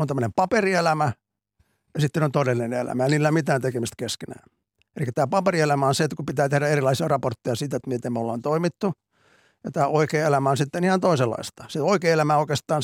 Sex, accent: male, native